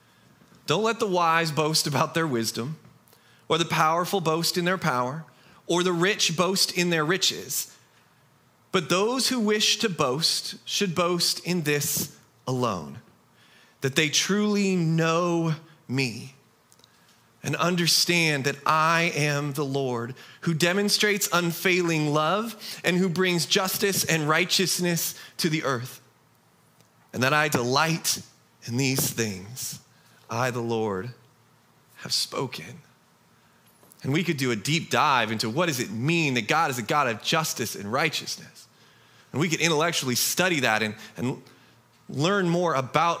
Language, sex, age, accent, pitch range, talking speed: English, male, 30-49, American, 135-180 Hz, 140 wpm